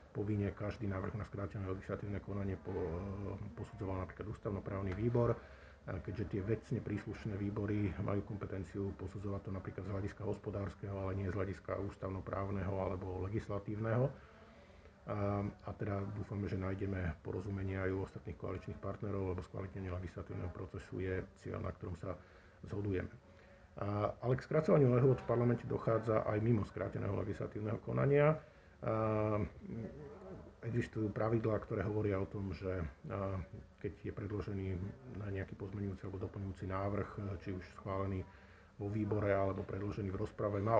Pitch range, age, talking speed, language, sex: 95-105 Hz, 50-69, 140 wpm, Slovak, male